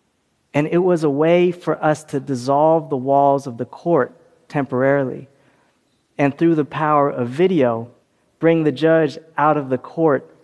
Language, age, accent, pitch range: Korean, 40-59, American, 130-155 Hz